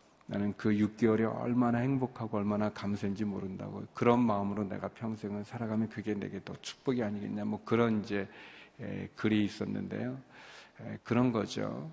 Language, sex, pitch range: Korean, male, 105-125 Hz